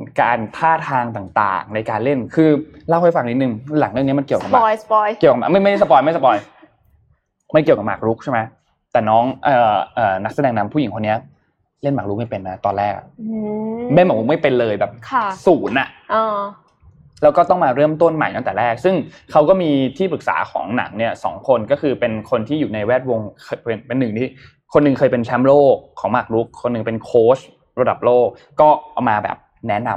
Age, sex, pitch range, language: 20-39, male, 115-160 Hz, Thai